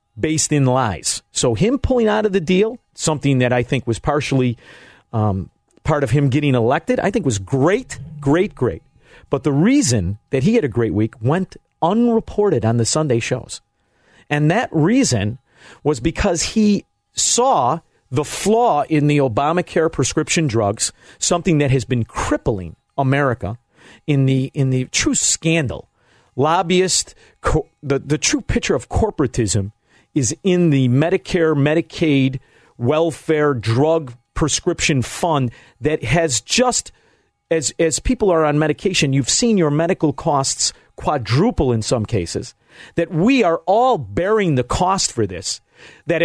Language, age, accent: English, 40-59, American